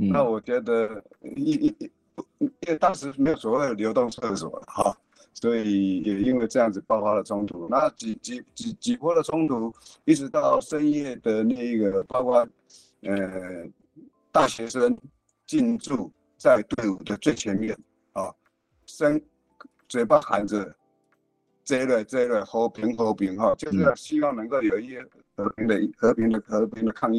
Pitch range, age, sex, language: 100-150 Hz, 50-69, male, Chinese